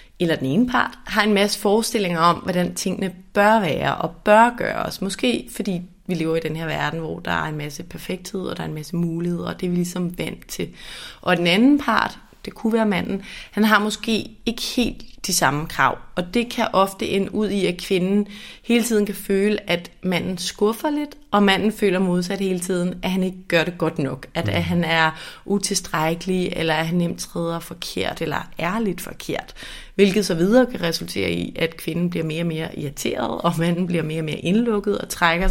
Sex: female